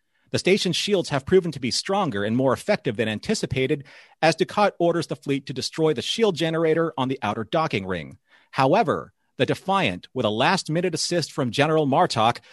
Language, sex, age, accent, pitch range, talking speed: English, male, 40-59, American, 125-165 Hz, 180 wpm